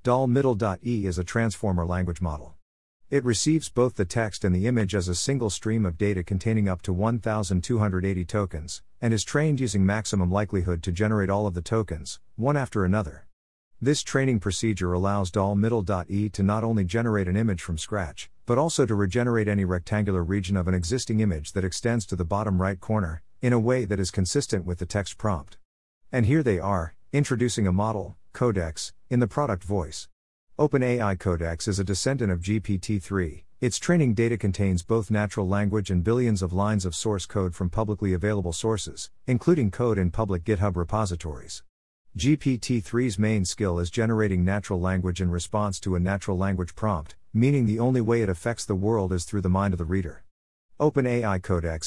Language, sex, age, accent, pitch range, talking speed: English, male, 50-69, American, 90-115 Hz, 180 wpm